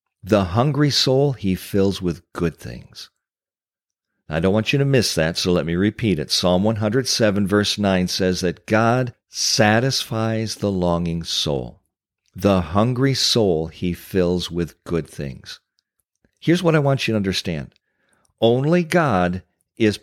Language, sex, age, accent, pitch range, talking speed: English, male, 50-69, American, 90-130 Hz, 145 wpm